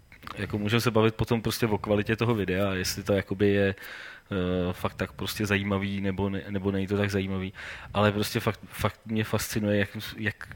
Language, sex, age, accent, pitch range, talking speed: Czech, male, 20-39, native, 105-120 Hz, 190 wpm